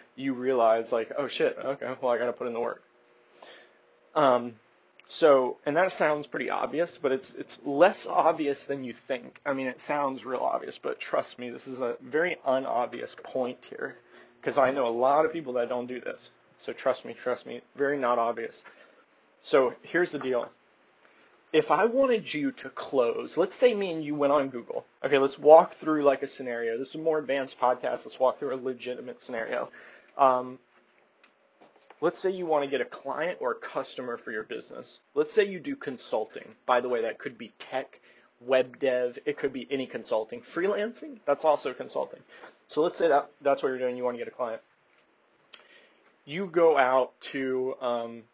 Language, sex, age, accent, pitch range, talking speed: English, male, 30-49, American, 125-155 Hz, 195 wpm